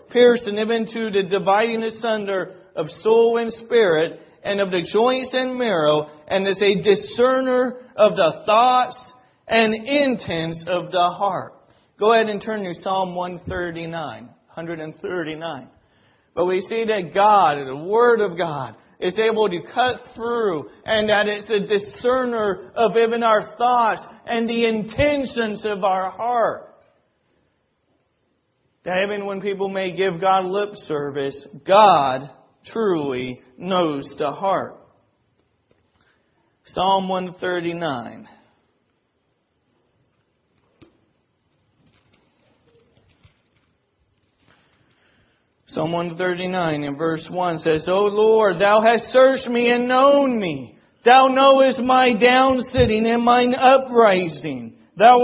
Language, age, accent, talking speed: English, 40-59, American, 120 wpm